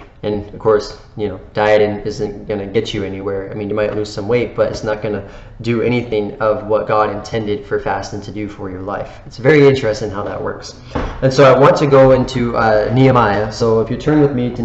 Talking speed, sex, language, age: 240 wpm, male, English, 20-39